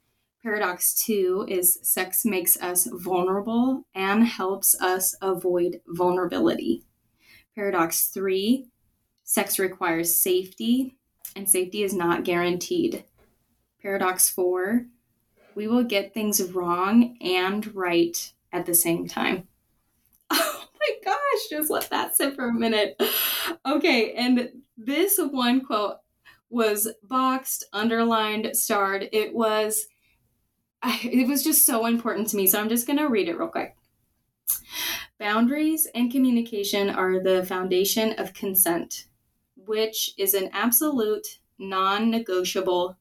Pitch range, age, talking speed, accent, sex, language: 185-245 Hz, 20-39, 120 wpm, American, female, English